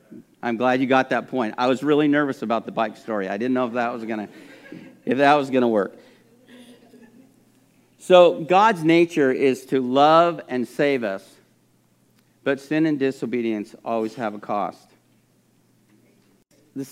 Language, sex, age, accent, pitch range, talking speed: English, male, 50-69, American, 125-165 Hz, 145 wpm